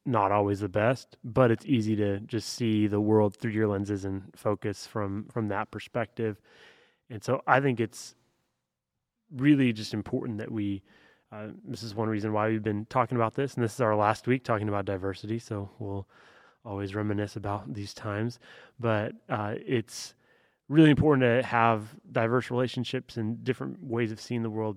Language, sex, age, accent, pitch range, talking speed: English, male, 20-39, American, 105-120 Hz, 180 wpm